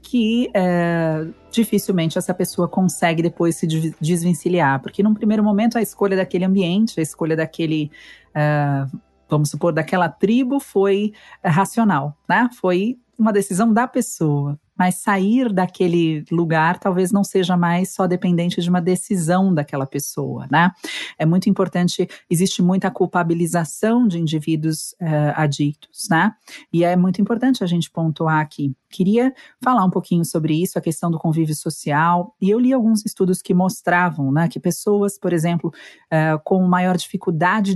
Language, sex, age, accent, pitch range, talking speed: Portuguese, female, 40-59, Brazilian, 165-205 Hz, 145 wpm